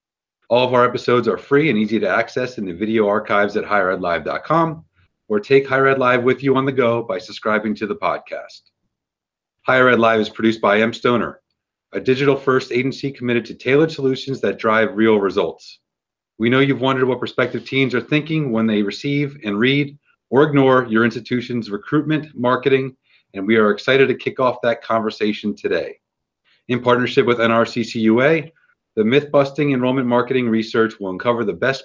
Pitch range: 110-135 Hz